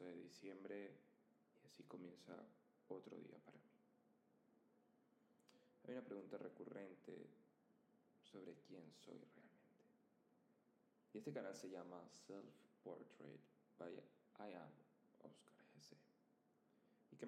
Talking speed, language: 110 wpm, Spanish